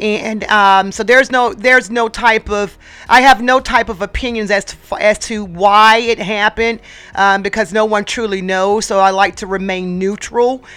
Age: 40-59